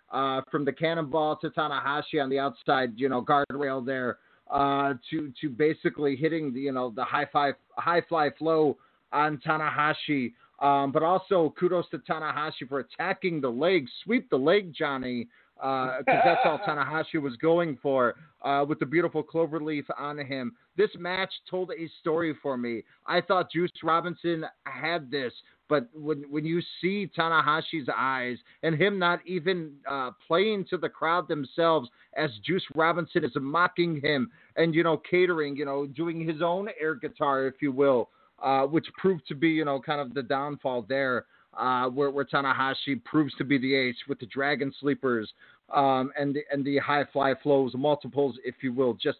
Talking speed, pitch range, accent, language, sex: 180 wpm, 135-160 Hz, American, English, male